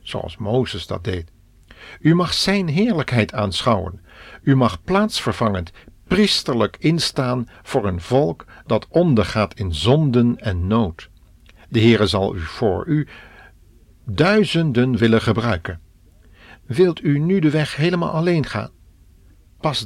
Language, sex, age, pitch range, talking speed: Dutch, male, 60-79, 95-130 Hz, 125 wpm